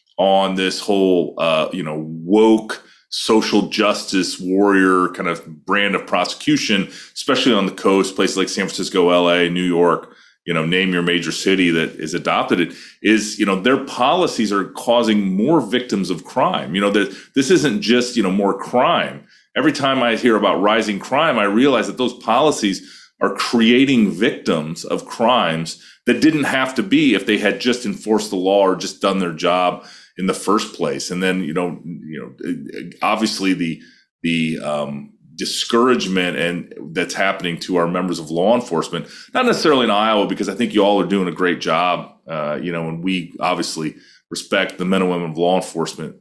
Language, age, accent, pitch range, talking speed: English, 30-49, American, 90-105 Hz, 185 wpm